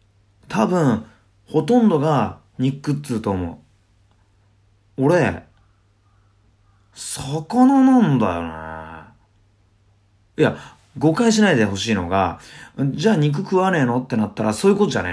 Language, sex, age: Japanese, male, 30-49